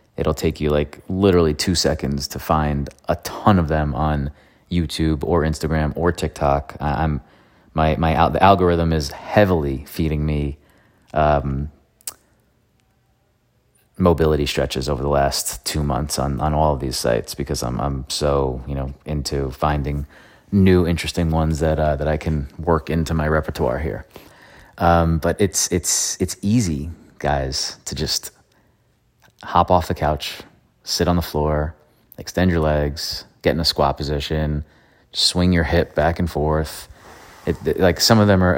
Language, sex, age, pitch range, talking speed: English, male, 30-49, 75-90 Hz, 155 wpm